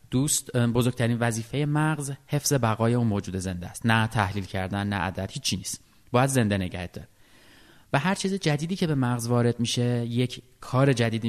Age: 30-49